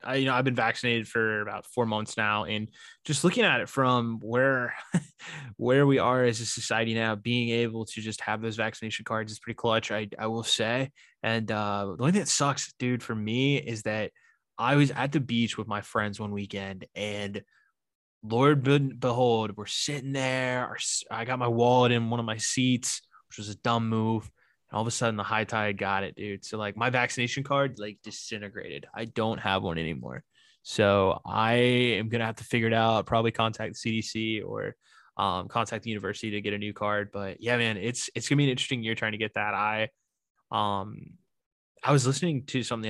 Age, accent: 20-39, American